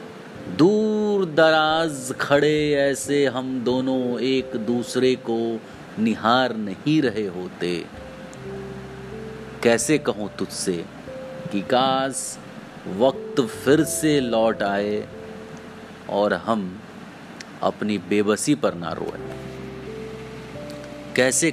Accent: native